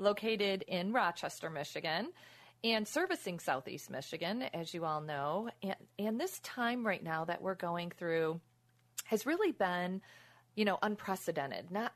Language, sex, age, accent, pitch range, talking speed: English, female, 40-59, American, 165-210 Hz, 145 wpm